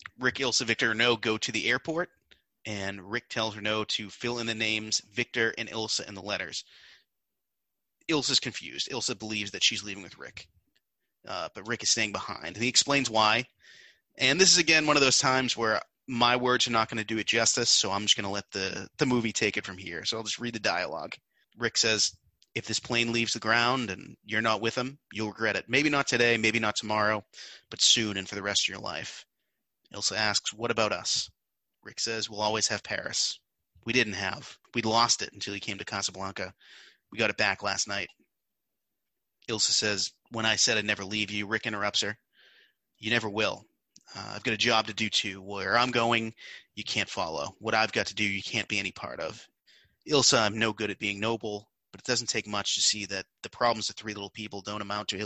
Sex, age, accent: male, 30-49, American